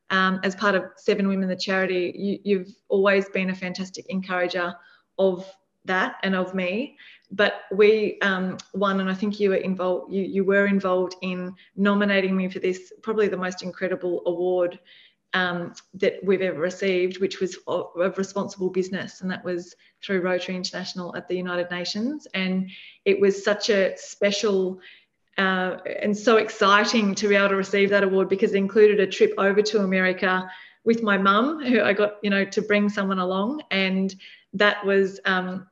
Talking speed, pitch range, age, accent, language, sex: 175 wpm, 185-215 Hz, 20-39, Australian, English, female